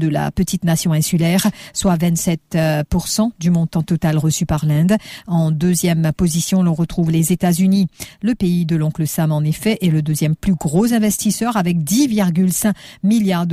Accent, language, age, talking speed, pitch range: French, English, 50-69, 160 wpm, 165-190 Hz